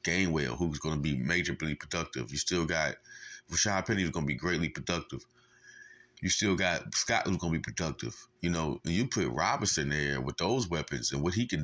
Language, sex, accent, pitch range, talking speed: English, male, American, 95-125 Hz, 210 wpm